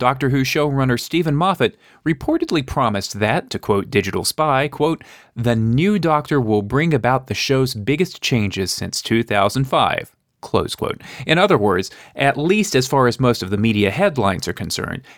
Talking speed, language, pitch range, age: 165 wpm, English, 110-155 Hz, 30-49